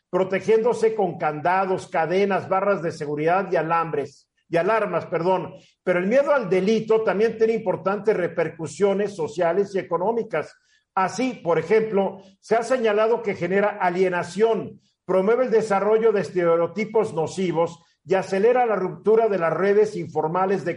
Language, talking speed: Spanish, 140 wpm